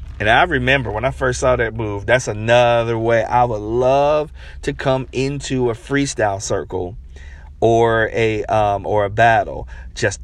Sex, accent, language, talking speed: male, American, English, 165 wpm